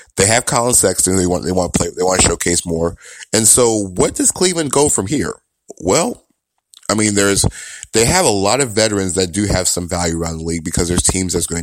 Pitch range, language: 85-105 Hz, English